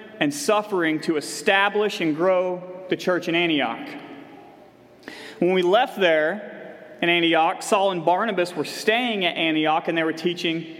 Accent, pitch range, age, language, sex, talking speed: American, 170-230 Hz, 30-49, English, male, 150 wpm